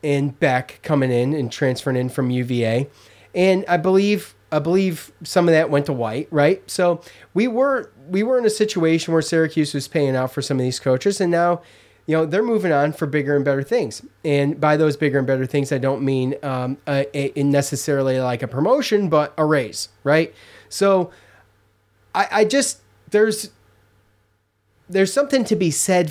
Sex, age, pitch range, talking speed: male, 30-49, 130-170 Hz, 190 wpm